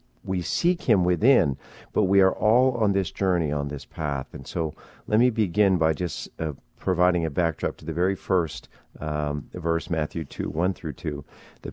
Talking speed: 190 wpm